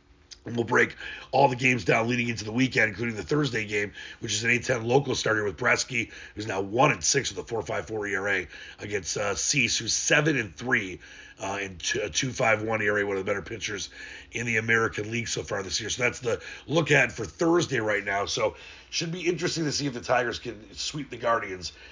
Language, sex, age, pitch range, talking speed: English, male, 30-49, 110-135 Hz, 205 wpm